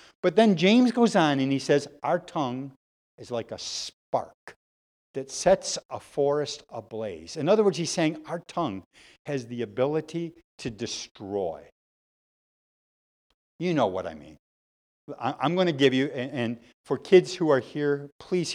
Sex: male